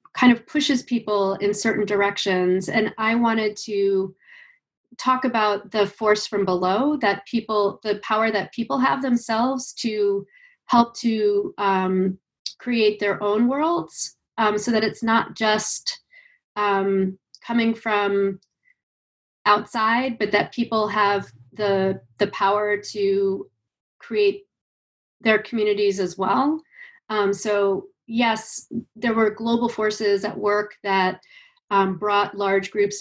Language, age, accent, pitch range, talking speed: English, 30-49, American, 195-230 Hz, 125 wpm